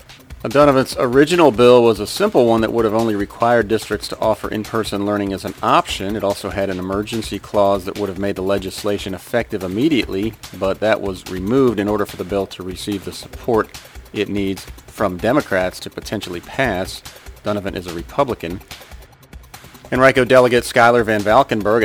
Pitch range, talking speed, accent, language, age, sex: 100-115 Hz, 175 wpm, American, English, 40-59, male